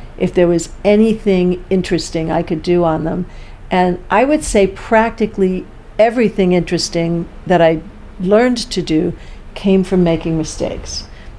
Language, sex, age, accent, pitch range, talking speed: English, female, 60-79, American, 170-215 Hz, 135 wpm